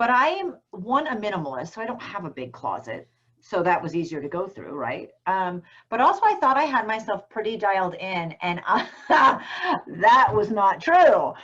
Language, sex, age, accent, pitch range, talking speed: English, female, 40-59, American, 180-280 Hz, 200 wpm